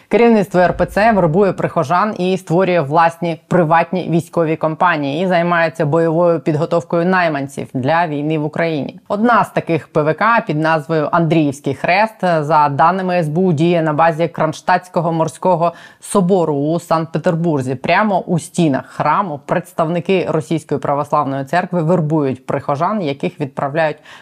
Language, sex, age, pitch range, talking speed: Ukrainian, female, 20-39, 150-175 Hz, 125 wpm